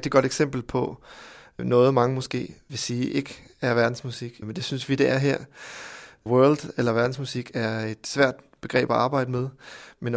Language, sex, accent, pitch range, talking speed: Danish, male, native, 115-135 Hz, 190 wpm